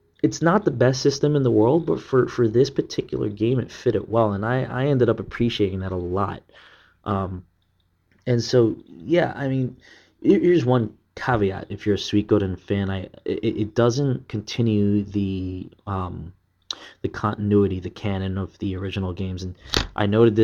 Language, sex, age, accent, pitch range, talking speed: English, male, 20-39, American, 95-115 Hz, 175 wpm